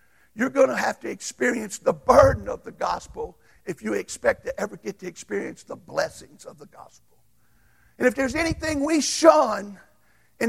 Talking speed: 175 wpm